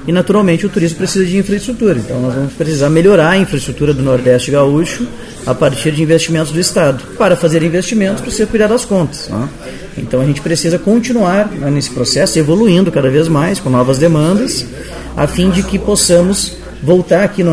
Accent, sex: Brazilian, male